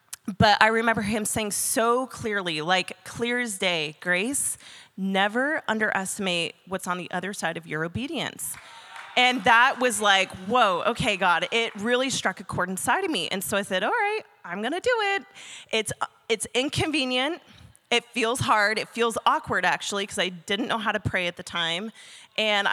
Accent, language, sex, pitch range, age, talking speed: American, English, female, 200-255 Hz, 30-49, 180 wpm